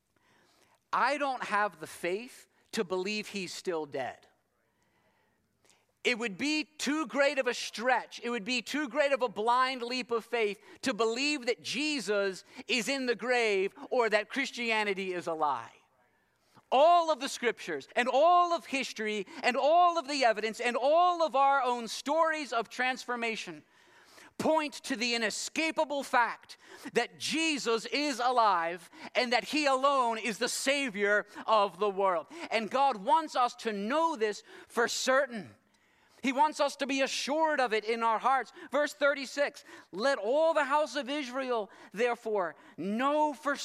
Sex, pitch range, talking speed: male, 225-290 Hz, 155 wpm